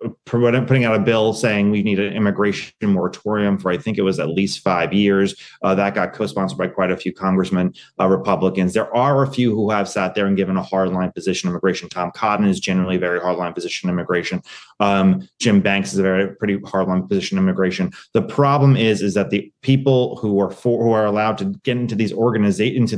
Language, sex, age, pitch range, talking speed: English, male, 30-49, 100-140 Hz, 220 wpm